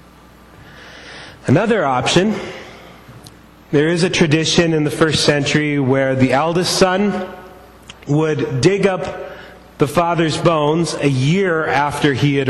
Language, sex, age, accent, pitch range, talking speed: English, male, 30-49, American, 125-160 Hz, 120 wpm